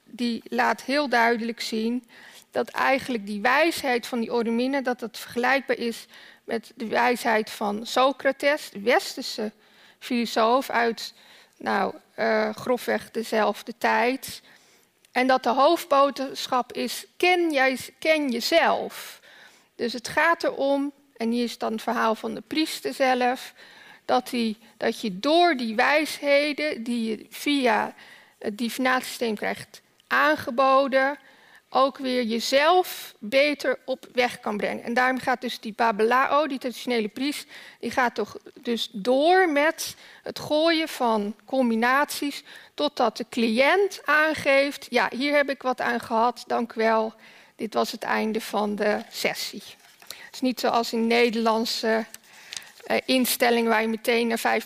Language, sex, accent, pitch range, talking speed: Dutch, female, Dutch, 230-275 Hz, 140 wpm